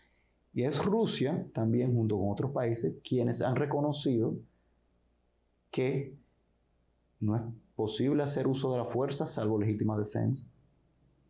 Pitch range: 110-145 Hz